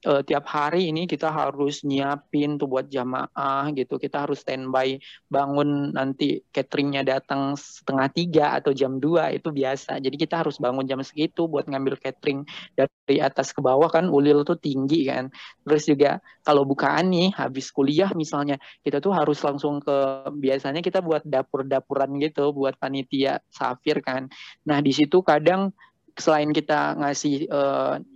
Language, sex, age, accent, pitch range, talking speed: Indonesian, male, 20-39, native, 135-165 Hz, 150 wpm